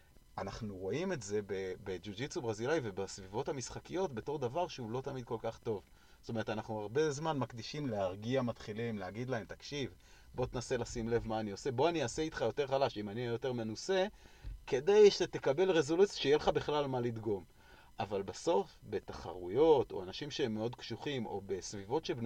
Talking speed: 145 wpm